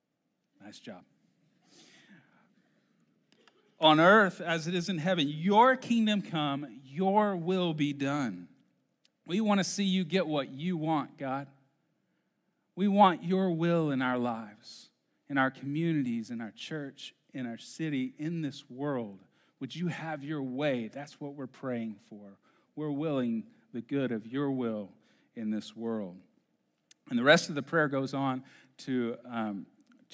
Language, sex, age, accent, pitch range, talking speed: English, male, 40-59, American, 115-165 Hz, 150 wpm